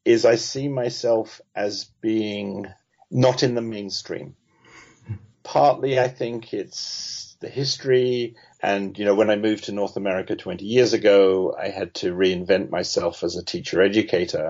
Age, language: 50-69, English